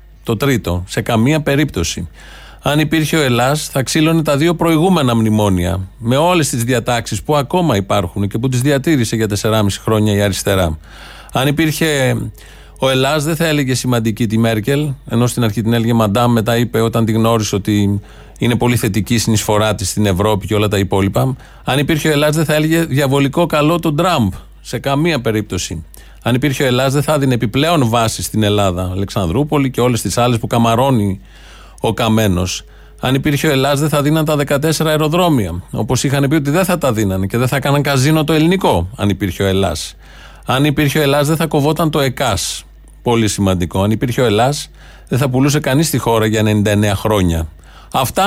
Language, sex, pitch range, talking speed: Greek, male, 105-150 Hz, 190 wpm